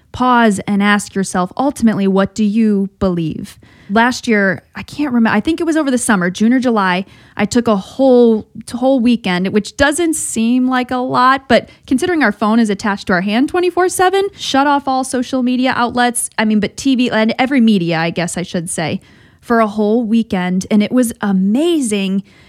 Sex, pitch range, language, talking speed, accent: female, 195-240 Hz, English, 195 wpm, American